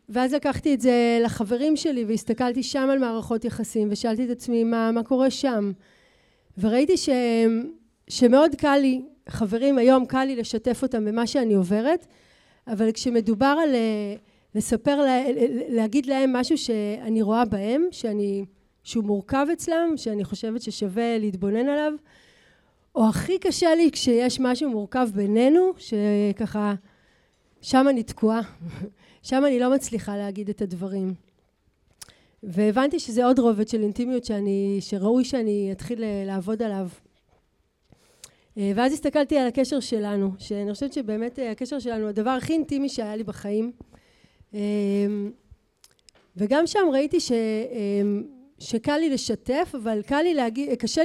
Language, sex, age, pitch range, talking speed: Hebrew, female, 30-49, 210-265 Hz, 130 wpm